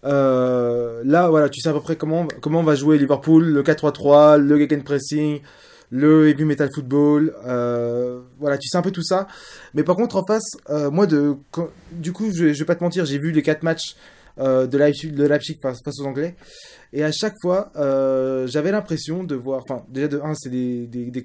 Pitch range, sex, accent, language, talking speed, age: 135-165 Hz, male, French, French, 215 wpm, 20-39